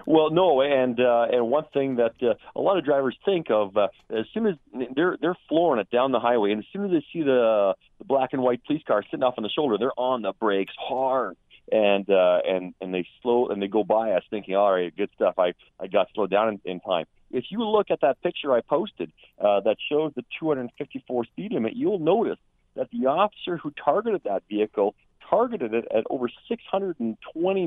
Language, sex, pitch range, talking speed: English, male, 110-150 Hz, 225 wpm